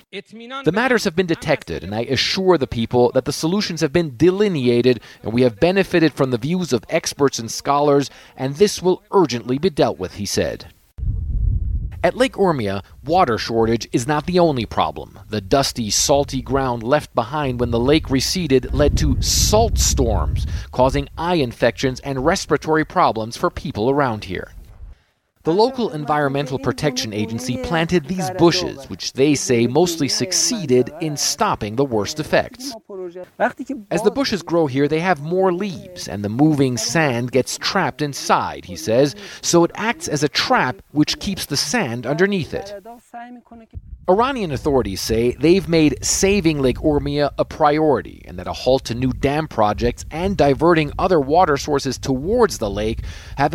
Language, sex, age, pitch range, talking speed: English, male, 40-59, 120-180 Hz, 160 wpm